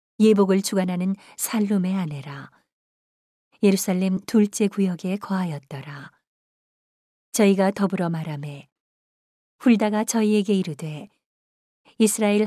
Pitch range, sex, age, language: 180-215 Hz, female, 40-59, Korean